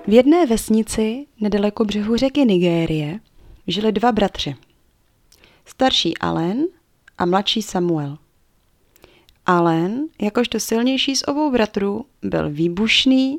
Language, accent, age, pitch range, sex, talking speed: Czech, native, 30-49, 170-245 Hz, female, 105 wpm